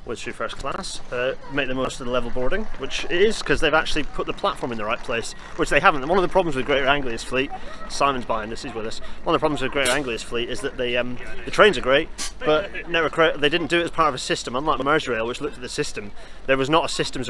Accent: British